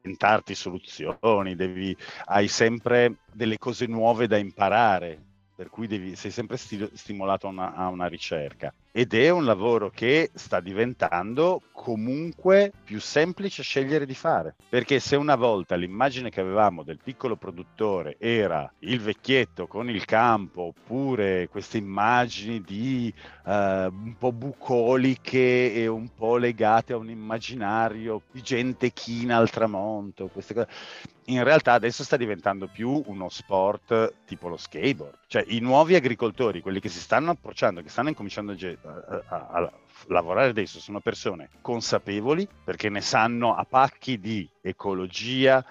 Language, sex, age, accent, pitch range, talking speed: Italian, male, 50-69, native, 100-125 Hz, 145 wpm